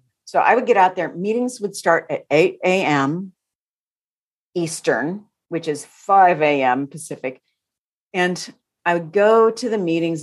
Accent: American